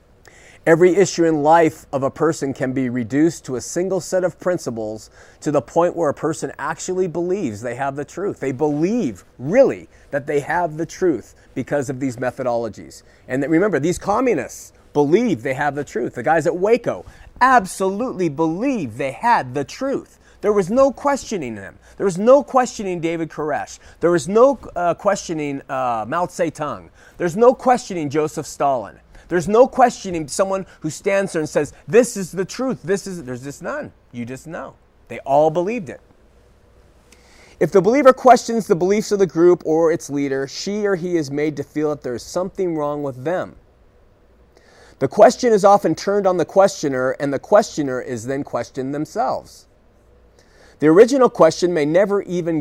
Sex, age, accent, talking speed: male, 30-49, American, 175 wpm